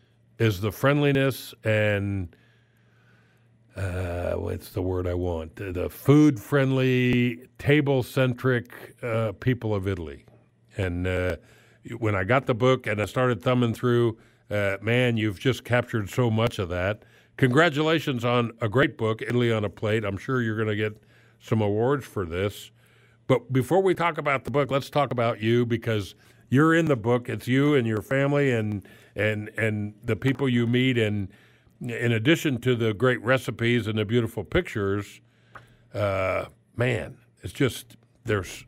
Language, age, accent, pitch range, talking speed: English, 50-69, American, 105-130 Hz, 155 wpm